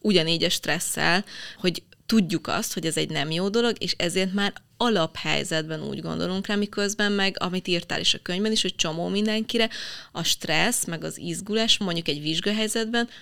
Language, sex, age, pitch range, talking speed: Hungarian, female, 20-39, 170-220 Hz, 175 wpm